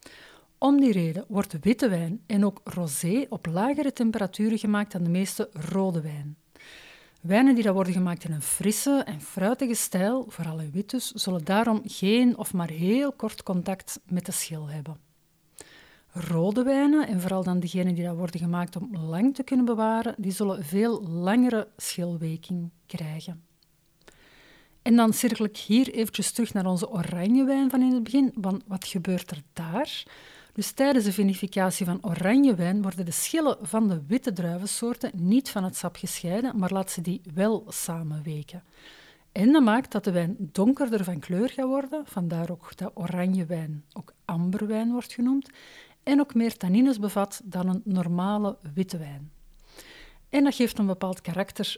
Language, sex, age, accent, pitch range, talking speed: Dutch, female, 50-69, Dutch, 175-230 Hz, 170 wpm